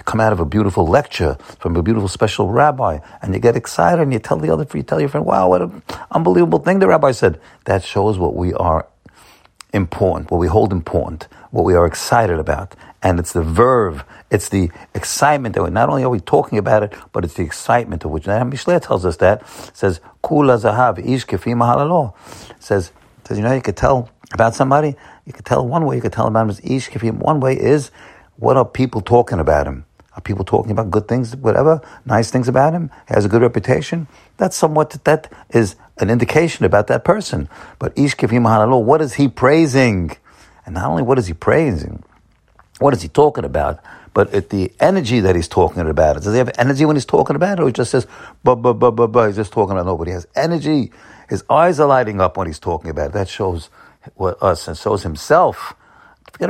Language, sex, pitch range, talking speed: English, male, 100-130 Hz, 220 wpm